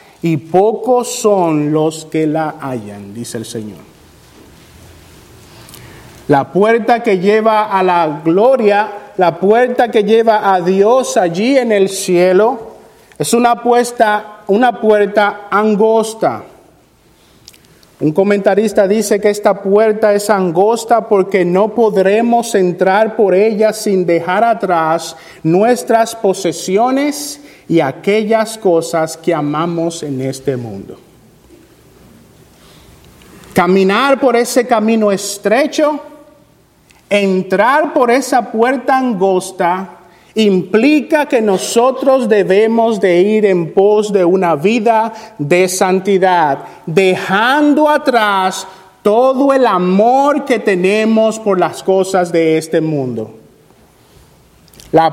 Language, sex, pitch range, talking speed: Spanish, male, 180-230 Hz, 105 wpm